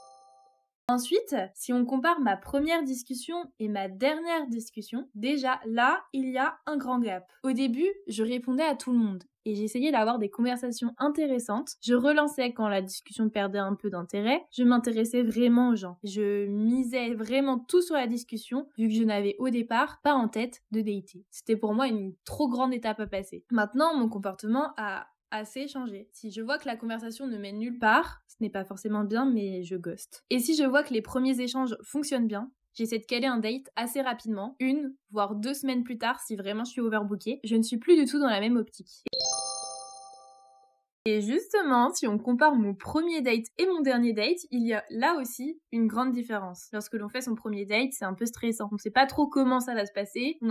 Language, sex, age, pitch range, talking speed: French, female, 20-39, 215-265 Hz, 210 wpm